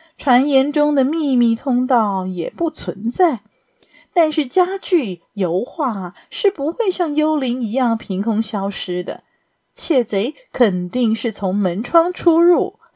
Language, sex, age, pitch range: Chinese, female, 30-49, 195-295 Hz